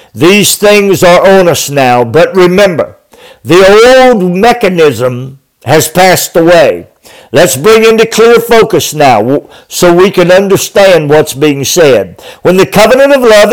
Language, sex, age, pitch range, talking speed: English, male, 60-79, 165-205 Hz, 140 wpm